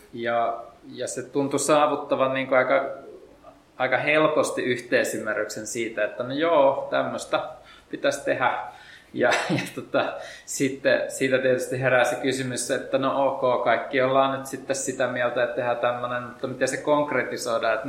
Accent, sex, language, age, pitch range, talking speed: native, male, Finnish, 20-39, 115-135 Hz, 145 wpm